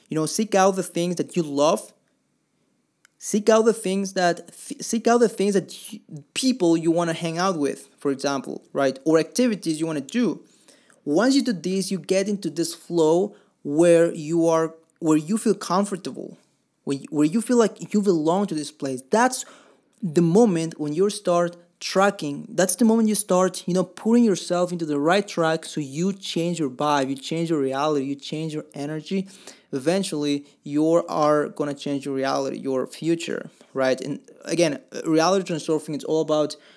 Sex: male